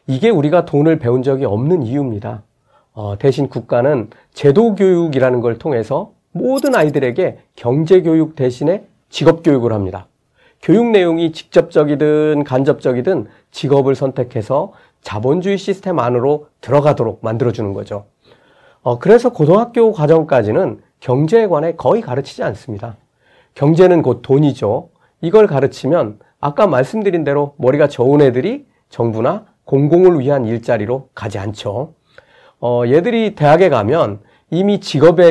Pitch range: 120-175 Hz